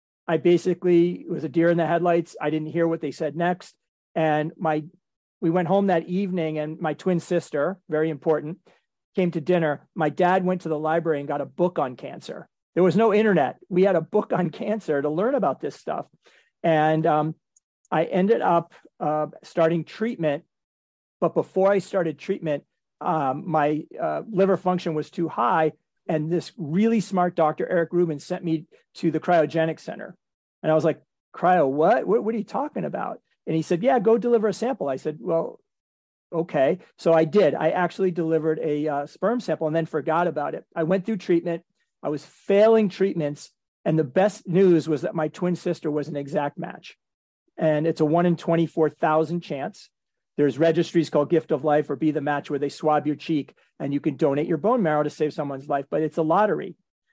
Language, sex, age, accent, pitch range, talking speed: English, male, 40-59, American, 155-180 Hz, 195 wpm